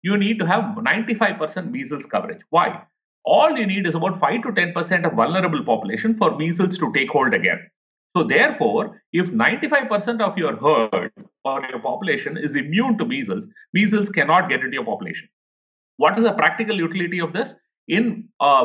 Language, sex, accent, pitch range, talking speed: English, male, Indian, 160-220 Hz, 175 wpm